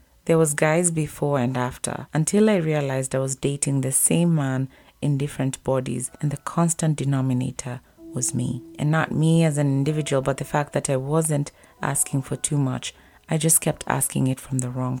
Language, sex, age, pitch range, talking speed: English, female, 30-49, 130-165 Hz, 190 wpm